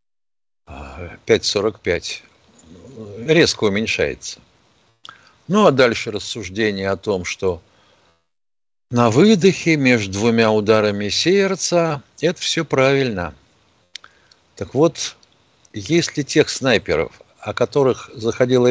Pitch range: 110-155 Hz